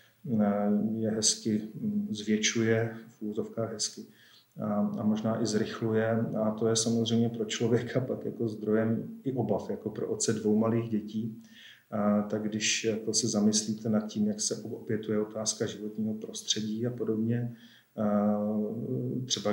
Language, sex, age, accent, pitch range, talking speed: Czech, male, 40-59, native, 105-115 Hz, 135 wpm